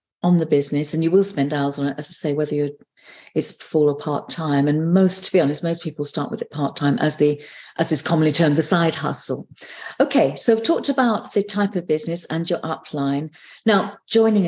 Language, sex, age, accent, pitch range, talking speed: English, female, 50-69, British, 150-190 Hz, 220 wpm